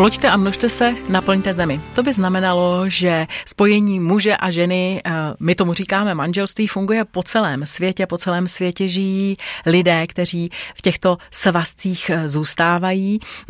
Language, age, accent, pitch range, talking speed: Czech, 30-49, native, 170-195 Hz, 140 wpm